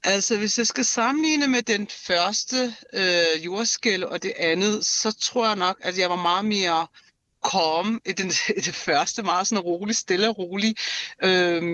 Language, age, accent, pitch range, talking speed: Danish, 60-79, native, 170-210 Hz, 185 wpm